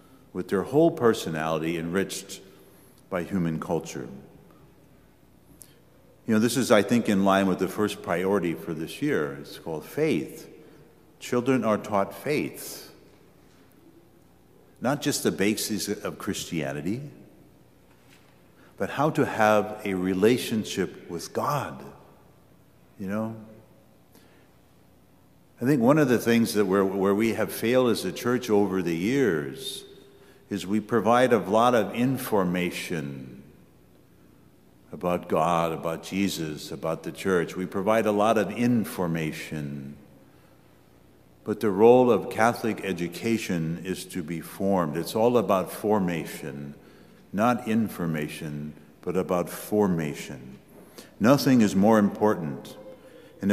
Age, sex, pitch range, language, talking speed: 60-79, male, 80-110 Hz, English, 120 wpm